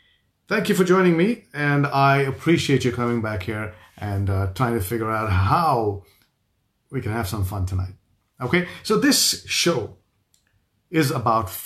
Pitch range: 100-155 Hz